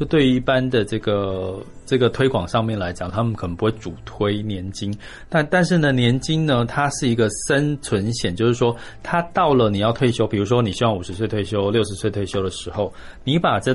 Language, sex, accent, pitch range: Chinese, male, native, 100-130 Hz